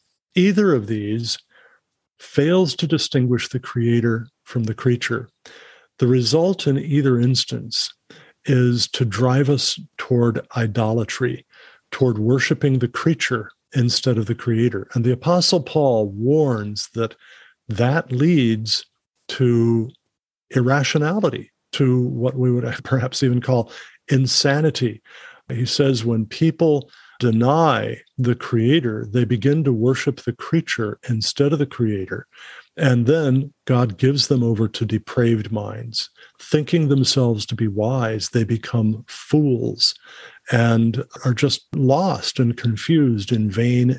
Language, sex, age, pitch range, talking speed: English, male, 50-69, 115-140 Hz, 125 wpm